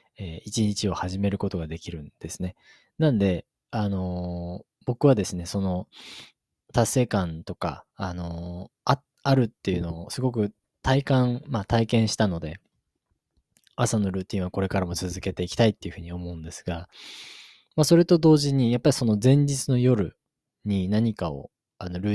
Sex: male